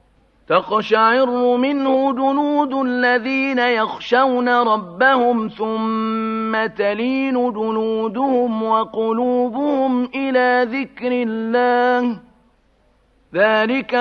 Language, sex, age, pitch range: Arabic, male, 50-69, 225-260 Hz